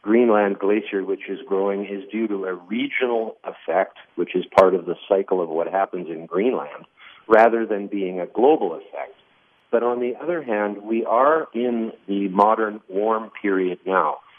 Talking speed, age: 170 wpm, 50-69